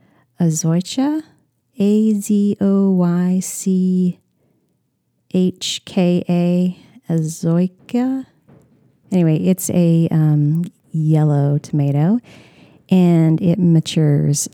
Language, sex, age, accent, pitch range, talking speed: English, female, 30-49, American, 155-200 Hz, 50 wpm